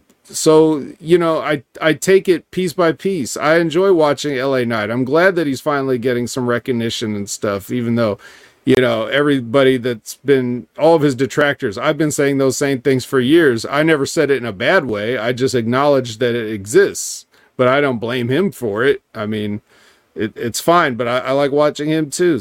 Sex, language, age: male, English, 40-59